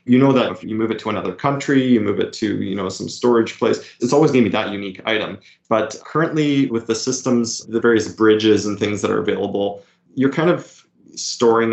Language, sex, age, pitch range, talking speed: English, male, 20-39, 105-125 Hz, 225 wpm